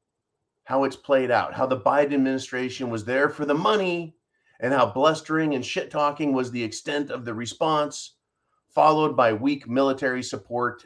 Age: 30-49